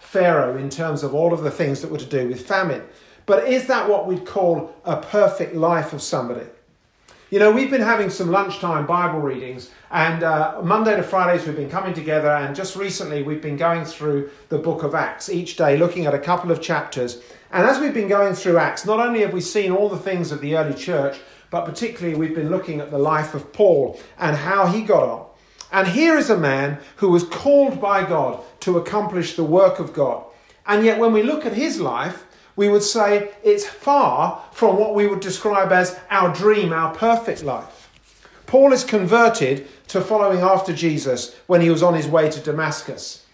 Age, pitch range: 50-69, 155-205 Hz